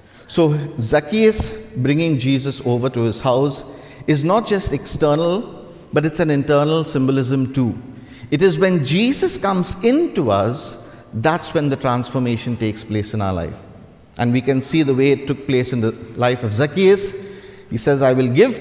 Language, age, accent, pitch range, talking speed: English, 50-69, Indian, 115-150 Hz, 170 wpm